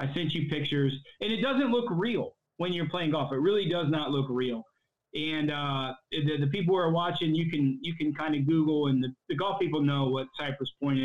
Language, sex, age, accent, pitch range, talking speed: English, male, 20-39, American, 145-180 Hz, 235 wpm